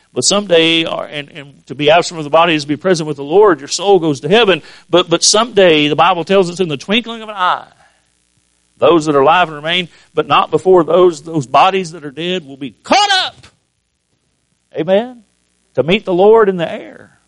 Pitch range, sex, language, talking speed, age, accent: 155-255 Hz, male, English, 210 wpm, 50-69, American